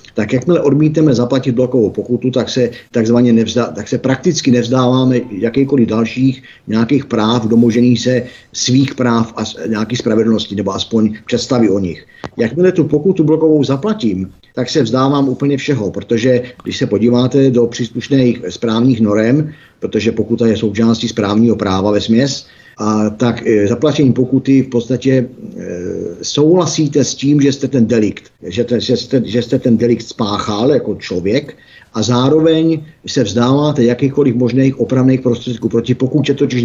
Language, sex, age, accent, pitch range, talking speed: Czech, male, 50-69, native, 115-135 Hz, 145 wpm